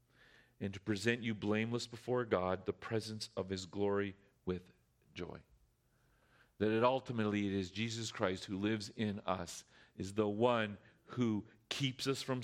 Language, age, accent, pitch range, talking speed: English, 40-59, American, 105-125 Hz, 155 wpm